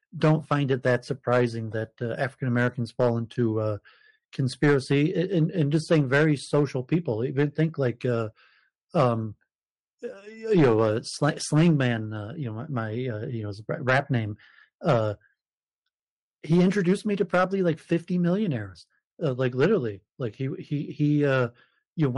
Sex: male